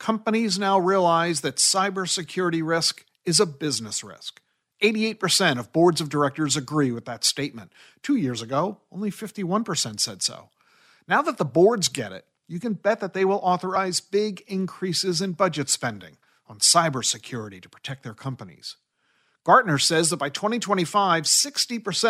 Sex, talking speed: male, 150 wpm